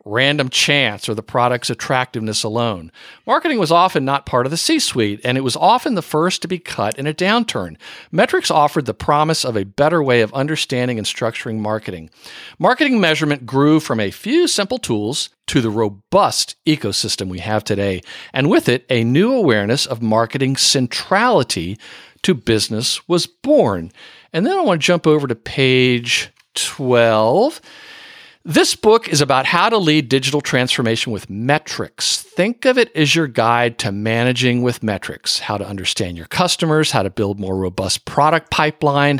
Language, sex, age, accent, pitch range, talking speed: English, male, 50-69, American, 110-155 Hz, 170 wpm